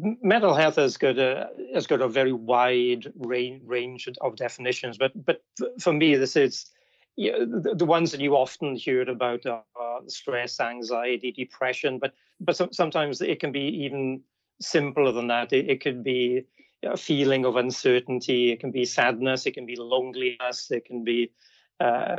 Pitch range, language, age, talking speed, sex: 125-150 Hz, English, 40-59, 175 wpm, male